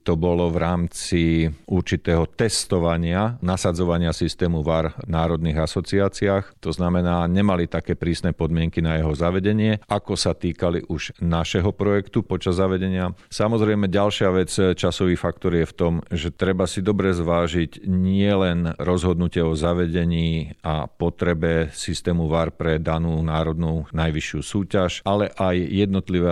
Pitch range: 80-90 Hz